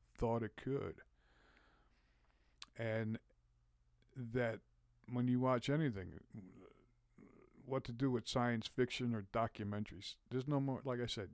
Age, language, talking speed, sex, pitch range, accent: 50-69, English, 120 wpm, male, 105-125 Hz, American